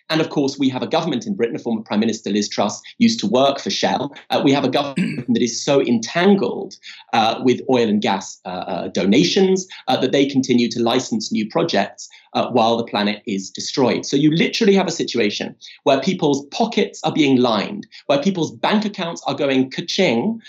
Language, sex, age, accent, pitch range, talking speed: English, male, 30-49, British, 135-205 Hz, 205 wpm